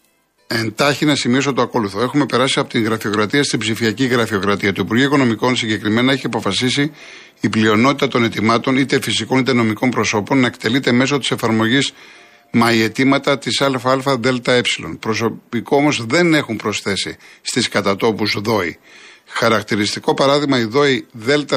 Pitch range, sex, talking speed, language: 115-150 Hz, male, 135 wpm, Greek